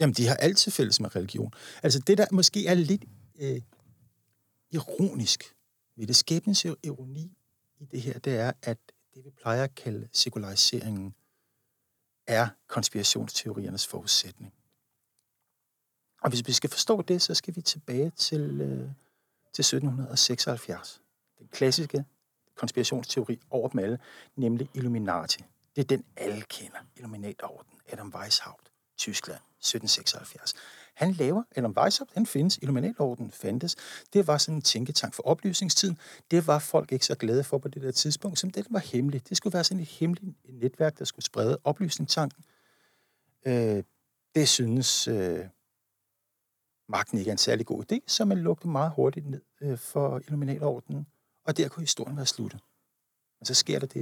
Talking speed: 150 wpm